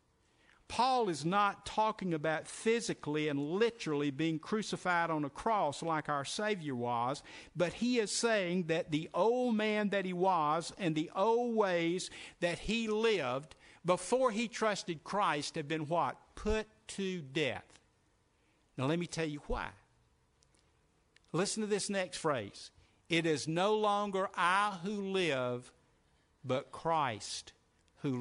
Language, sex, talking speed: English, male, 140 wpm